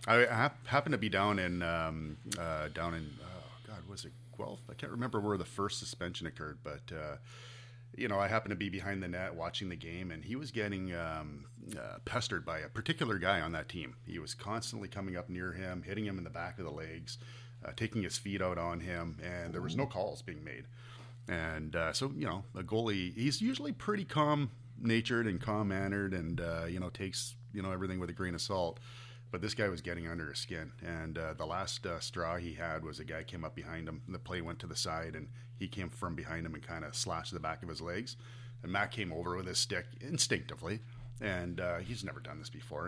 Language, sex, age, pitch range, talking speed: English, male, 30-49, 90-120 Hz, 230 wpm